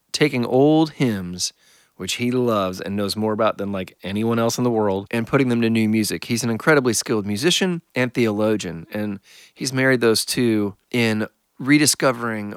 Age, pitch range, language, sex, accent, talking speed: 30-49, 100-125 Hz, English, male, American, 175 wpm